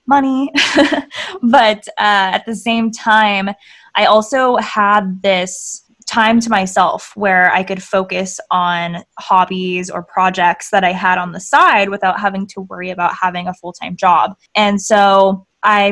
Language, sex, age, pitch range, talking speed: English, female, 20-39, 185-215 Hz, 150 wpm